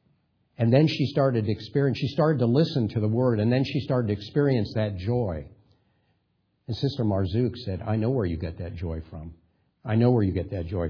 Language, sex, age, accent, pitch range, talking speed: English, male, 50-69, American, 95-125 Hz, 220 wpm